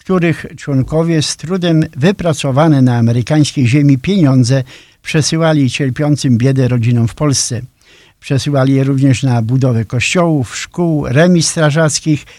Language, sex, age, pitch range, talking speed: Polish, male, 50-69, 130-160 Hz, 115 wpm